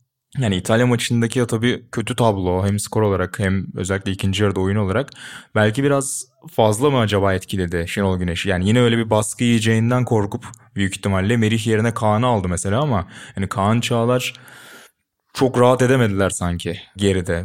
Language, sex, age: Turkish, male, 20-39